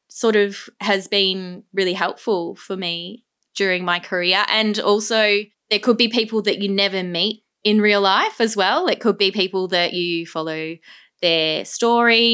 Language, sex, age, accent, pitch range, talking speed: English, female, 20-39, Australian, 175-210 Hz, 170 wpm